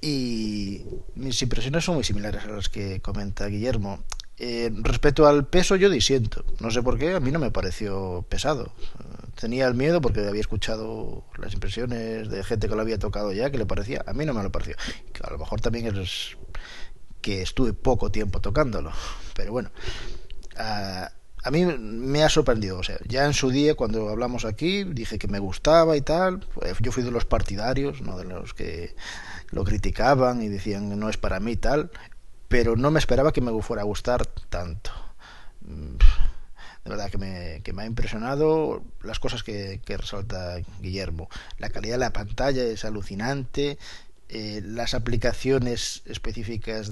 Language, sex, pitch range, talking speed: English, male, 100-125 Hz, 180 wpm